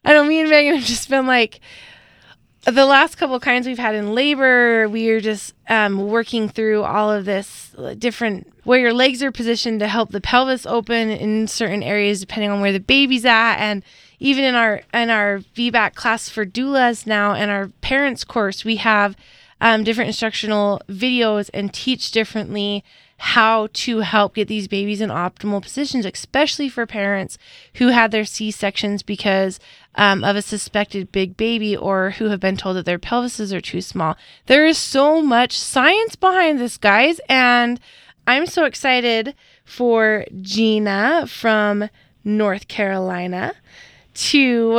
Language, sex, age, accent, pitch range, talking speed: English, female, 20-39, American, 205-255 Hz, 165 wpm